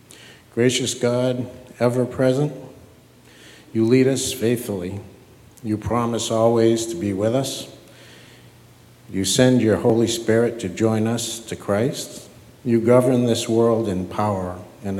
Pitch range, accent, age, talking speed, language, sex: 105-125 Hz, American, 50-69, 125 wpm, English, male